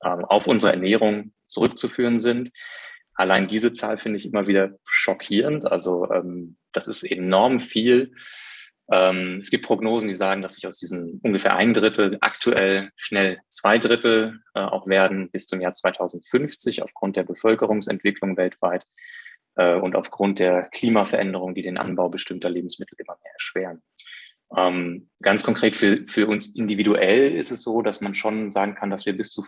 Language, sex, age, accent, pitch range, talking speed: German, male, 20-39, German, 95-110 Hz, 155 wpm